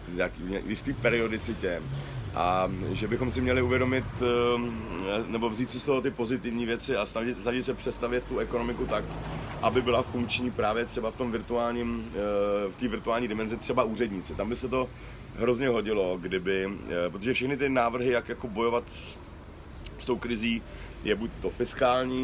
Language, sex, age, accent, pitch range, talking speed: Czech, male, 40-59, native, 105-125 Hz, 160 wpm